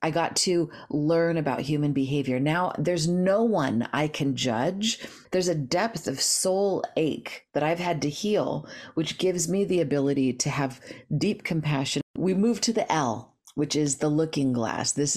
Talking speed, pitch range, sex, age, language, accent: 180 wpm, 140-185 Hz, female, 40-59, English, American